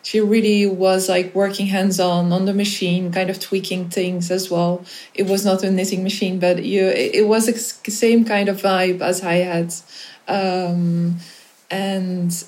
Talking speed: 175 wpm